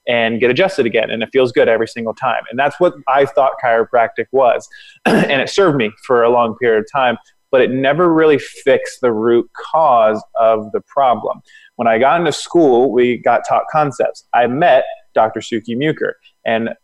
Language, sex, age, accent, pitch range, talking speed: English, male, 20-39, American, 120-145 Hz, 190 wpm